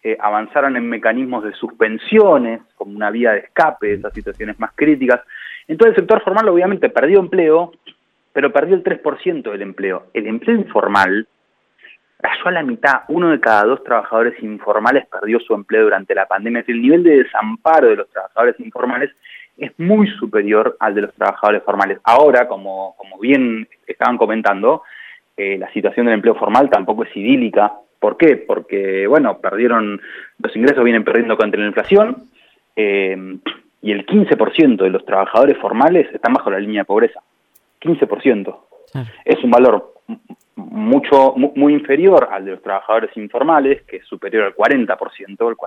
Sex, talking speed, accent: male, 165 wpm, Argentinian